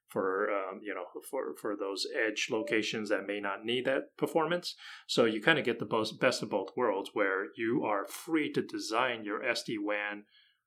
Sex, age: male, 30-49